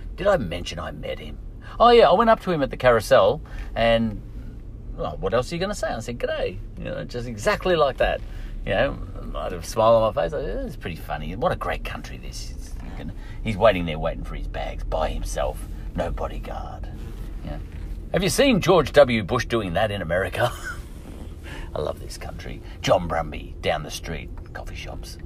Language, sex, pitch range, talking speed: English, male, 80-105 Hz, 200 wpm